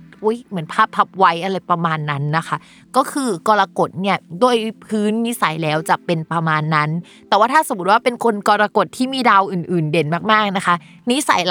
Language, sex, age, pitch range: Thai, female, 20-39, 170-225 Hz